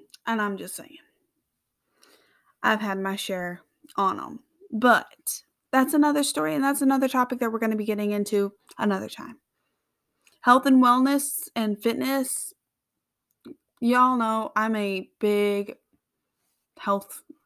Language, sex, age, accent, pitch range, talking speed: English, female, 20-39, American, 215-265 Hz, 130 wpm